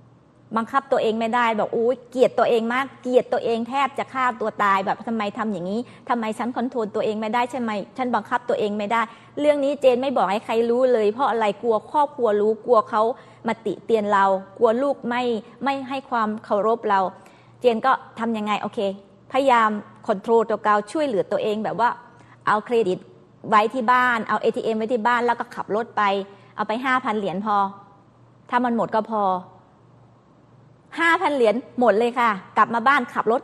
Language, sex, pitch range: Thai, female, 215-260 Hz